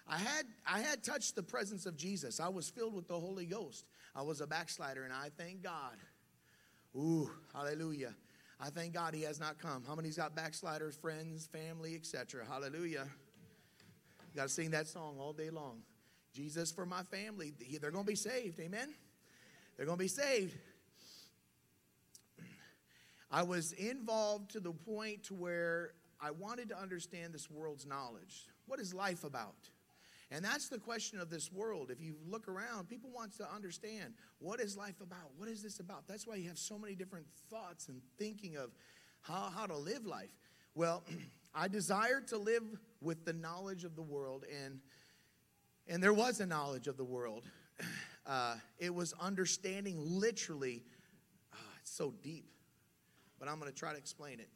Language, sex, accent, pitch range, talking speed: English, male, American, 150-205 Hz, 175 wpm